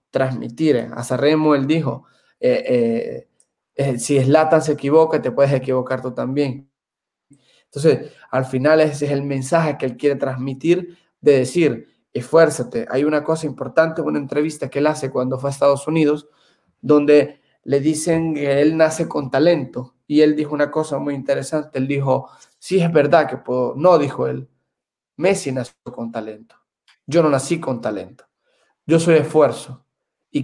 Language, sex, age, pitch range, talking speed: Spanish, male, 20-39, 135-160 Hz, 165 wpm